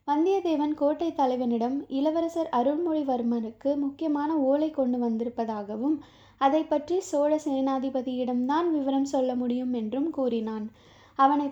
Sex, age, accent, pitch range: female, 20-39, native, 245-300 Hz